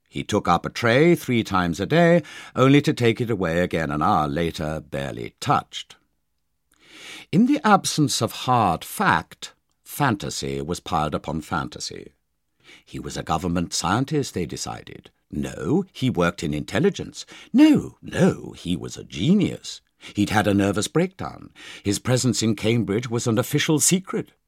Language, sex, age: English, male, 60-79